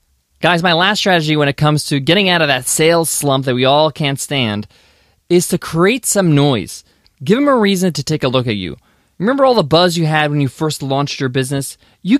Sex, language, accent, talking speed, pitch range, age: male, English, American, 230 wpm, 135-195 Hz, 20-39